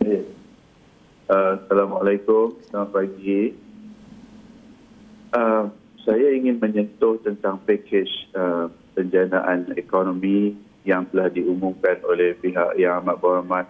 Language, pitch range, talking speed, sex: Malay, 90-115 Hz, 90 wpm, male